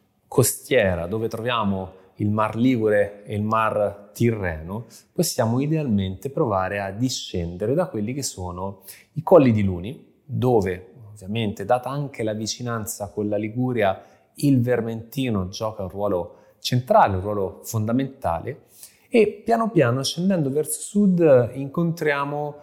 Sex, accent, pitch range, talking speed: male, native, 105-140 Hz, 125 wpm